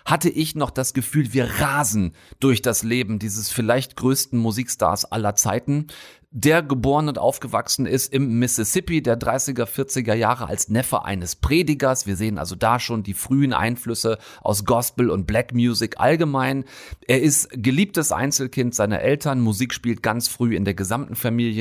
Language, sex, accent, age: German, male, German, 30-49